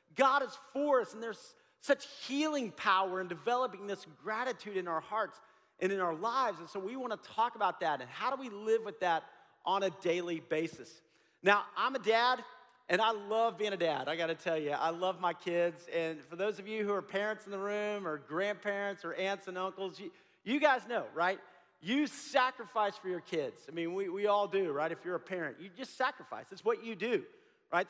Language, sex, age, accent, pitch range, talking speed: English, male, 40-59, American, 180-250 Hz, 220 wpm